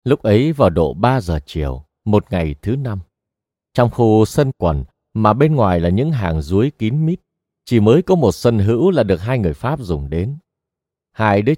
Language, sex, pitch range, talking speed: Vietnamese, male, 90-140 Hz, 200 wpm